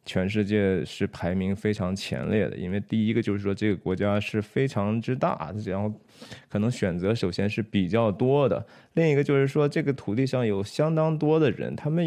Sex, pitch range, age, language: male, 105-150 Hz, 20-39, Chinese